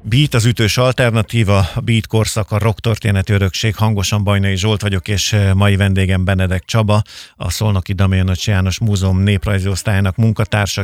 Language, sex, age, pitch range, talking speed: Hungarian, male, 50-69, 95-115 Hz, 150 wpm